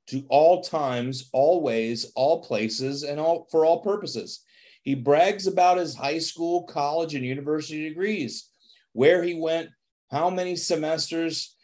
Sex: male